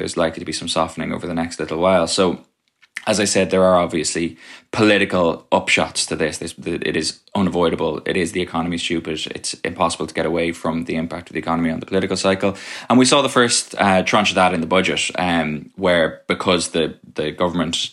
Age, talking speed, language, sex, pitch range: 20-39, 210 wpm, English, male, 80-95 Hz